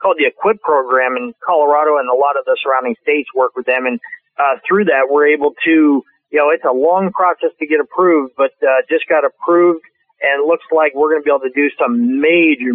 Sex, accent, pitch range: male, American, 140-180 Hz